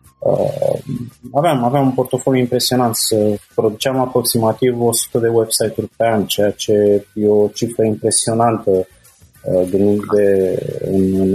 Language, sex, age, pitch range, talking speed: Romanian, male, 20-39, 105-125 Hz, 100 wpm